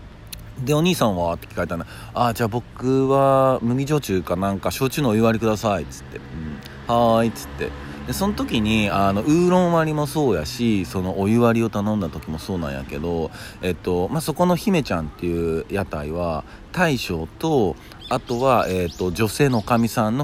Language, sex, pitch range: Japanese, male, 90-120 Hz